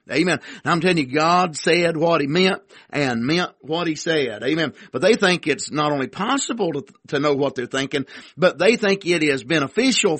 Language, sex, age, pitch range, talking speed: English, male, 50-69, 150-195 Hz, 210 wpm